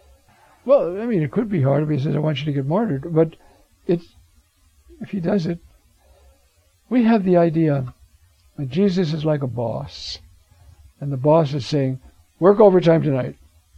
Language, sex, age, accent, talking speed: English, male, 60-79, American, 170 wpm